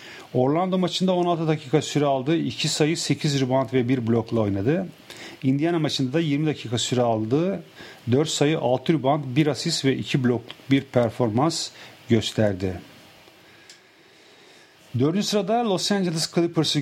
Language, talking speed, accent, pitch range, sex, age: English, 135 wpm, Turkish, 120-160 Hz, male, 40-59